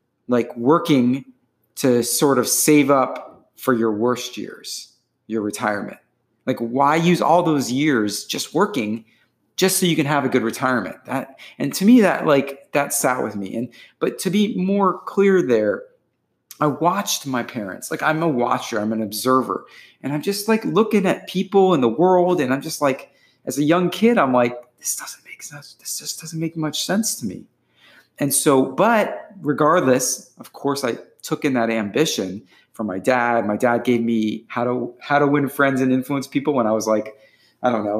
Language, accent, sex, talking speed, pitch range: English, American, male, 195 wpm, 115-155 Hz